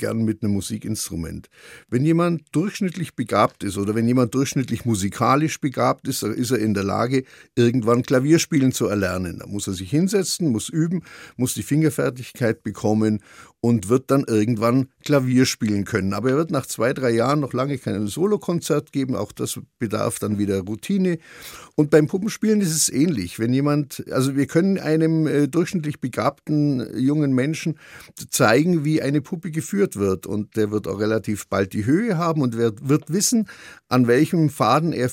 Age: 50-69